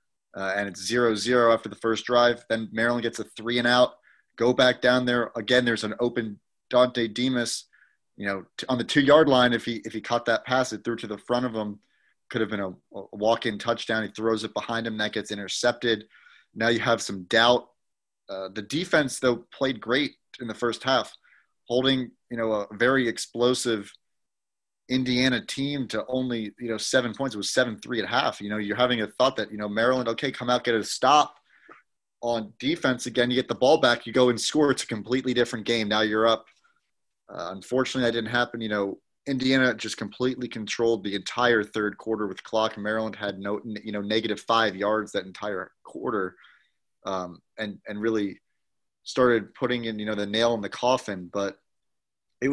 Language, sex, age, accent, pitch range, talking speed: English, male, 30-49, American, 110-125 Hz, 205 wpm